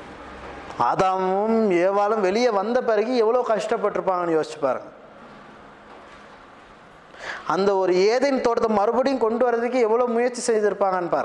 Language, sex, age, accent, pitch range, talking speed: Tamil, male, 20-39, native, 180-230 Hz, 100 wpm